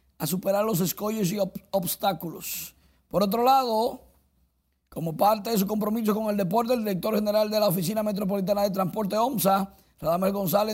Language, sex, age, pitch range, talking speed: Spanish, male, 50-69, 185-220 Hz, 160 wpm